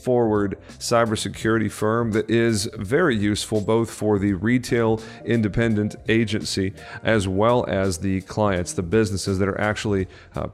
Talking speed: 135 wpm